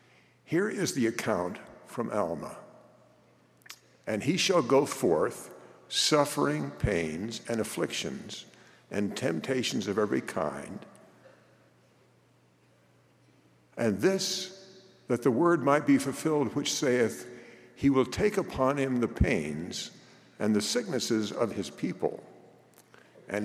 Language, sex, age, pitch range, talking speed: English, male, 60-79, 105-140 Hz, 115 wpm